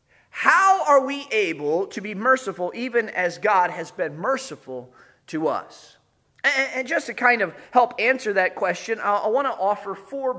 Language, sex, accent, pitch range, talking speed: English, male, American, 190-300 Hz, 170 wpm